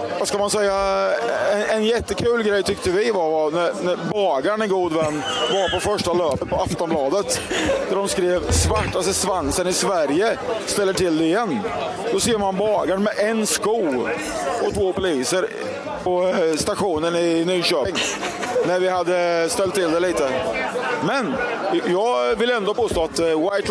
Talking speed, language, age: 155 wpm, Swedish, 30-49